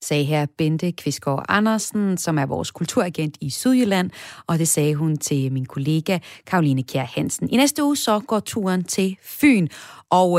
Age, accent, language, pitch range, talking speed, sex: 30-49, native, Danish, 155-215 Hz, 175 wpm, female